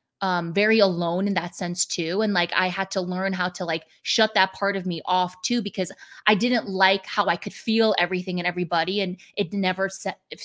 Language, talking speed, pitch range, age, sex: English, 220 wpm, 175-205 Hz, 20-39, female